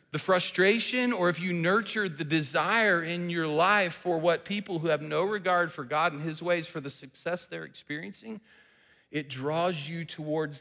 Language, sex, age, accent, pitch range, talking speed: English, male, 40-59, American, 155-195 Hz, 180 wpm